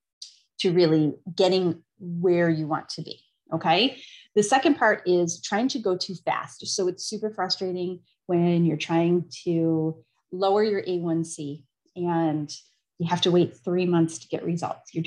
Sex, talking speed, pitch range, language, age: female, 160 wpm, 165-195 Hz, English, 30-49